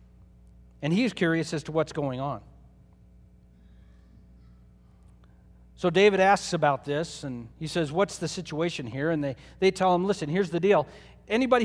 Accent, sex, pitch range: American, male, 130-205 Hz